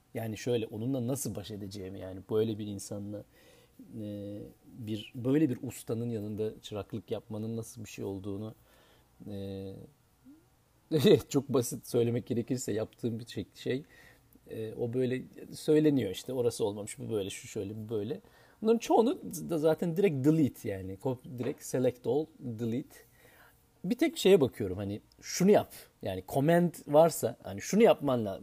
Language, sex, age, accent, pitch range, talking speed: Turkish, male, 40-59, native, 110-140 Hz, 140 wpm